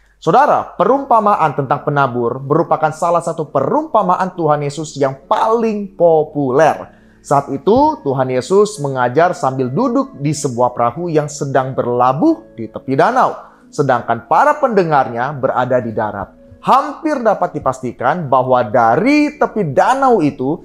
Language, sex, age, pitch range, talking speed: Indonesian, male, 20-39, 135-190 Hz, 125 wpm